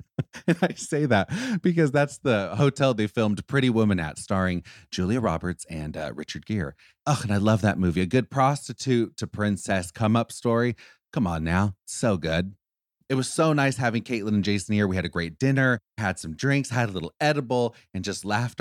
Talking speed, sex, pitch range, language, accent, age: 205 wpm, male, 90-120 Hz, English, American, 30-49